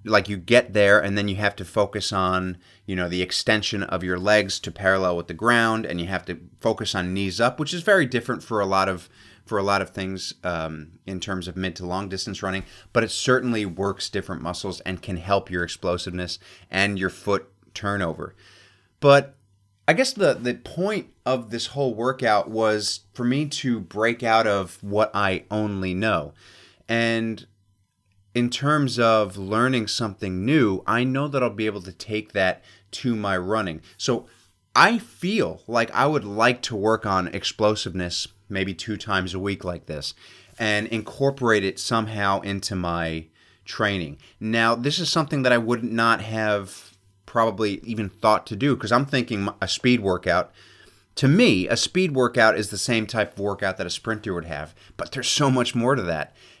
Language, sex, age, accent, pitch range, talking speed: English, male, 30-49, American, 95-120 Hz, 185 wpm